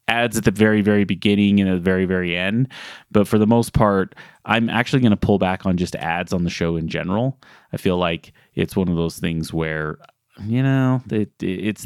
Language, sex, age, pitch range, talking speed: English, male, 30-49, 90-115 Hz, 220 wpm